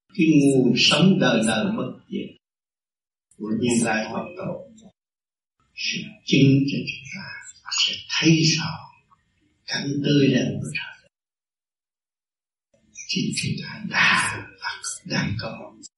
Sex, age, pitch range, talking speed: male, 60-79, 135-185 Hz, 130 wpm